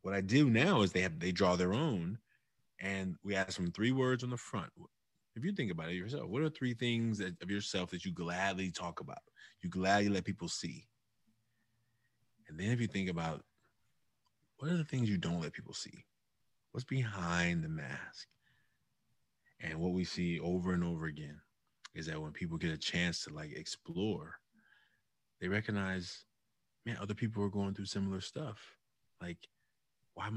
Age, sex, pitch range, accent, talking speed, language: 30-49, male, 90-120 Hz, American, 180 wpm, English